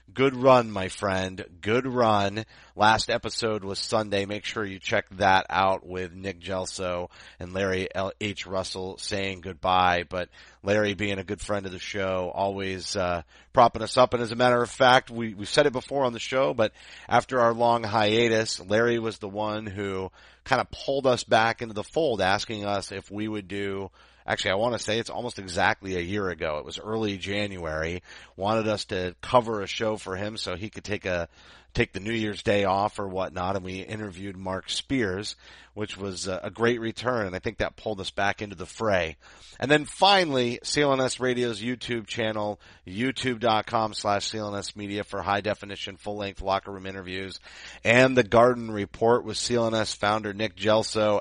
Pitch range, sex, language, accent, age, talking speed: 95-115 Hz, male, English, American, 30-49, 190 wpm